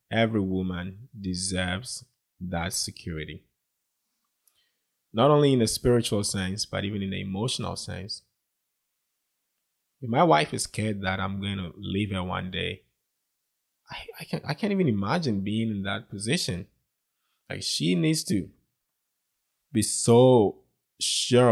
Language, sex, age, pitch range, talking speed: English, male, 20-39, 95-120 Hz, 135 wpm